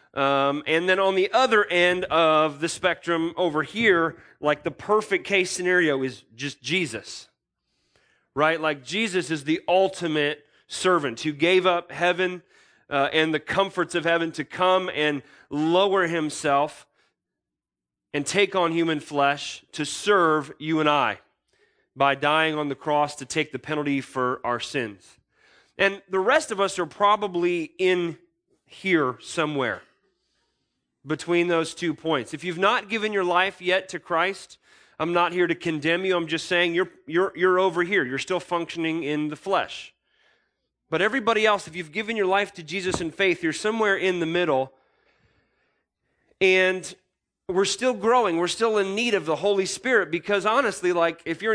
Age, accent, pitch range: 30-49, American, 155-195 Hz